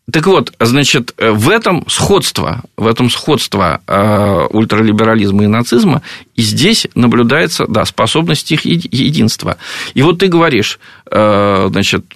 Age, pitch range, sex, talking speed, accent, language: 50-69, 110-145 Hz, male, 120 wpm, native, Russian